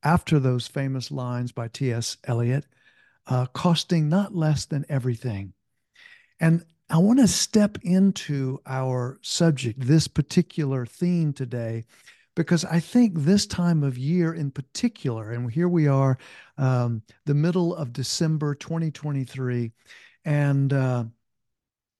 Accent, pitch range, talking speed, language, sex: American, 125-155 Hz, 120 wpm, English, male